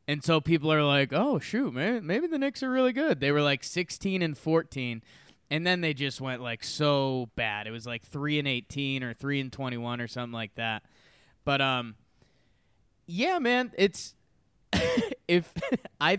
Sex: male